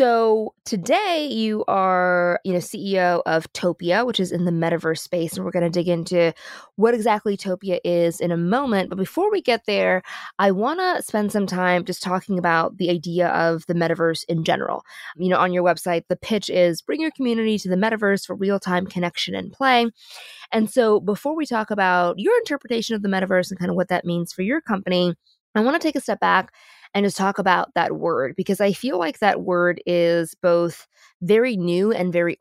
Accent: American